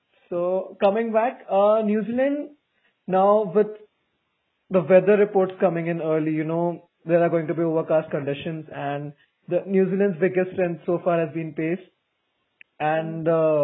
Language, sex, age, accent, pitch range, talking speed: English, male, 20-39, Indian, 150-180 Hz, 160 wpm